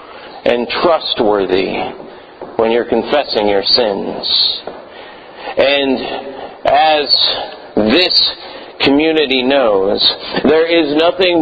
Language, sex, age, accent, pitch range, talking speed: English, male, 50-69, American, 150-245 Hz, 80 wpm